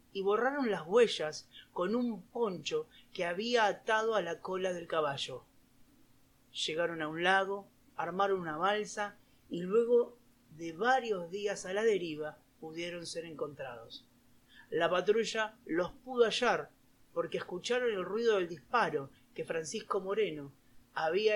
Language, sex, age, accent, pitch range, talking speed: Italian, male, 30-49, Argentinian, 165-215 Hz, 135 wpm